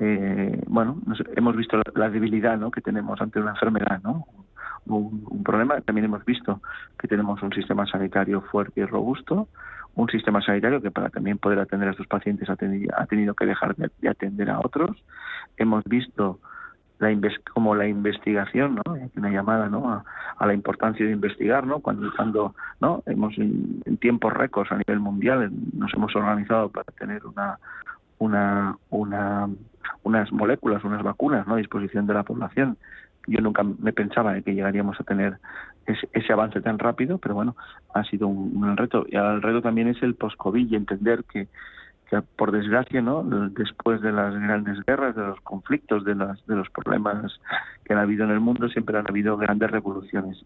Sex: male